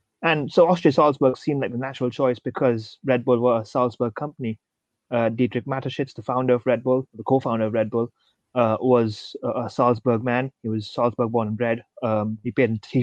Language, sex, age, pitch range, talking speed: English, male, 20-39, 115-130 Hz, 205 wpm